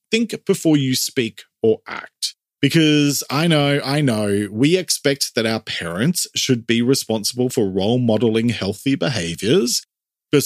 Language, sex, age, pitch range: English, male, 40-59, 110-150 Hz